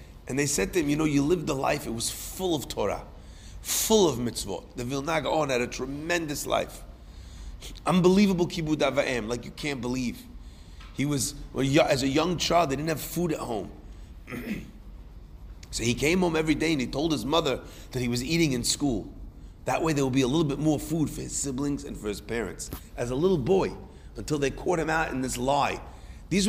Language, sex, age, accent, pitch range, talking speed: English, male, 30-49, American, 115-165 Hz, 210 wpm